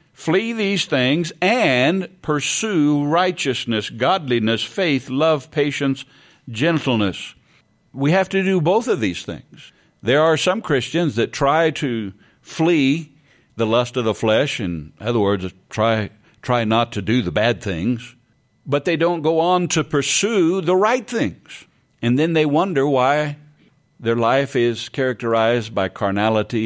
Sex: male